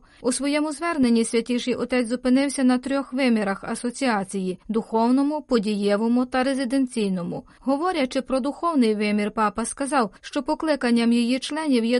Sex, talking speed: female, 130 wpm